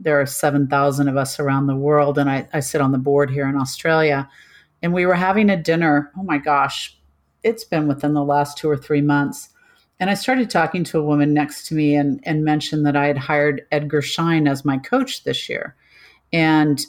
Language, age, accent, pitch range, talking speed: English, 40-59, American, 135-155 Hz, 215 wpm